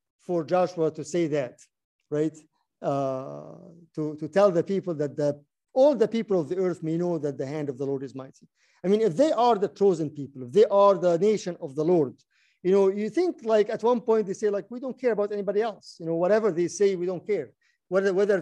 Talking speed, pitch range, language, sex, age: 235 wpm, 155-205 Hz, English, male, 50-69